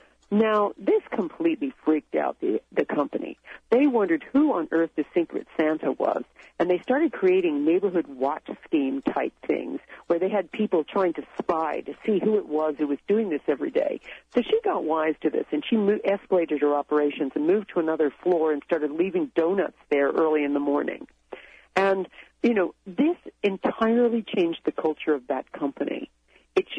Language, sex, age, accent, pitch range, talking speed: English, female, 50-69, American, 155-230 Hz, 180 wpm